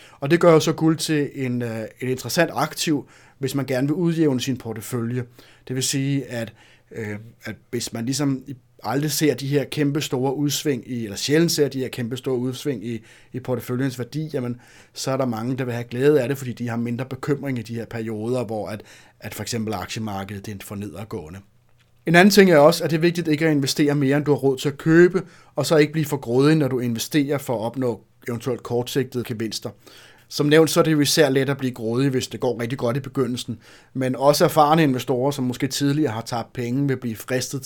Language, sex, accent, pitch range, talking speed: Danish, male, native, 115-145 Hz, 225 wpm